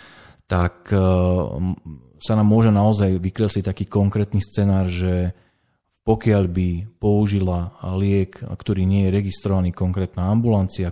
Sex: male